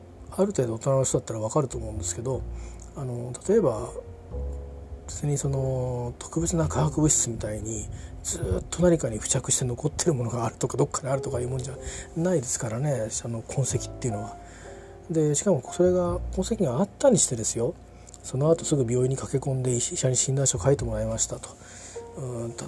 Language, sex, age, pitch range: Japanese, male, 40-59, 110-140 Hz